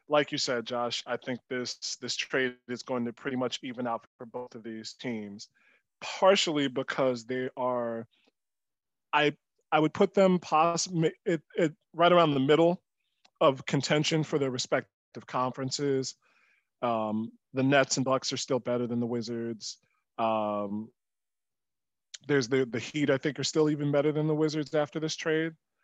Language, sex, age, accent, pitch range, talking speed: English, male, 20-39, American, 125-150 Hz, 165 wpm